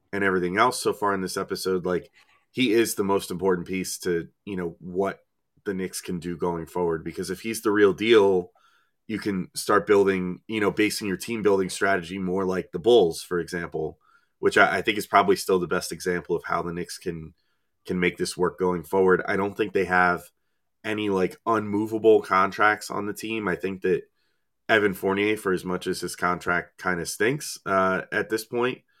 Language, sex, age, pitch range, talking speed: English, male, 30-49, 90-105 Hz, 205 wpm